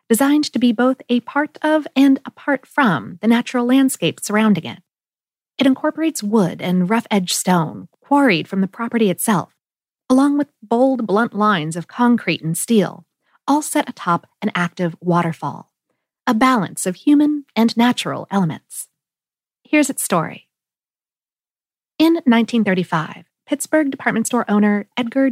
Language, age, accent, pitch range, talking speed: English, 40-59, American, 180-270 Hz, 135 wpm